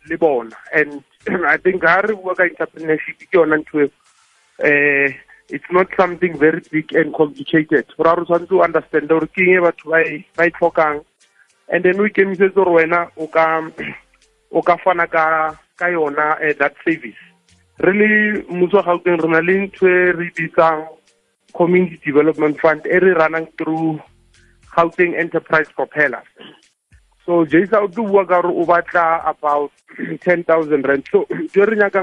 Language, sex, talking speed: English, male, 120 wpm